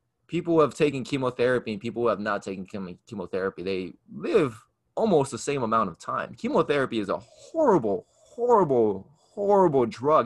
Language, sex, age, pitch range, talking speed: English, male, 20-39, 115-150 Hz, 160 wpm